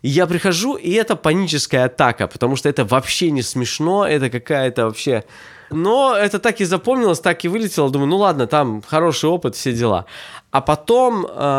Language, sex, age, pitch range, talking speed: Russian, male, 20-39, 115-165 Hz, 170 wpm